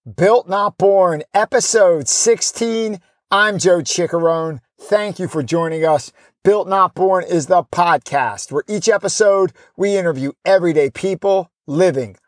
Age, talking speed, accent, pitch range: 50-69, 130 wpm, American, 145-185 Hz